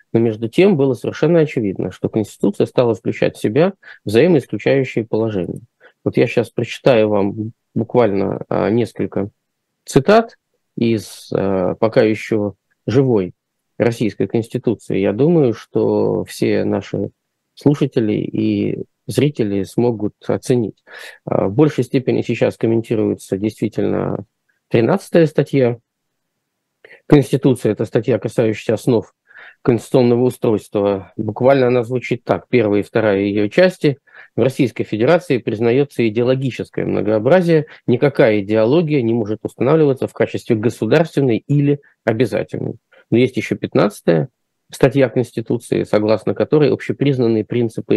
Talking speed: 110 wpm